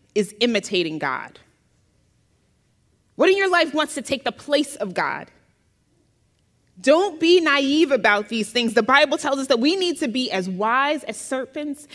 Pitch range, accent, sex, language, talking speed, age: 225-290 Hz, American, female, English, 165 wpm, 30-49